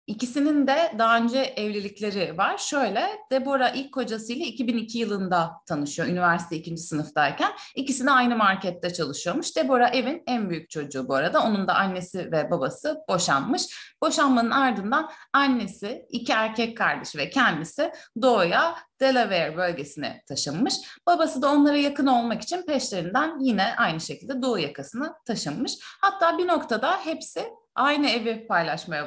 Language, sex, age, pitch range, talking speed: Turkish, female, 30-49, 175-285 Hz, 135 wpm